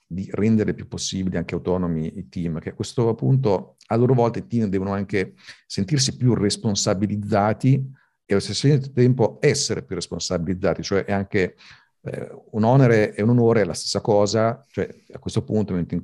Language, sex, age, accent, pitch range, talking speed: Italian, male, 50-69, native, 90-110 Hz, 180 wpm